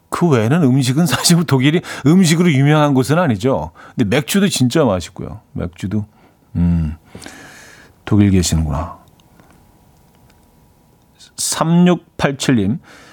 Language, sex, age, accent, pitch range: Korean, male, 40-59, native, 100-140 Hz